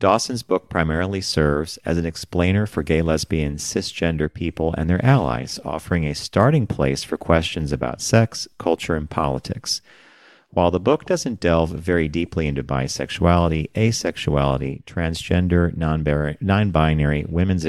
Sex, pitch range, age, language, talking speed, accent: male, 75-95 Hz, 40-59, English, 130 wpm, American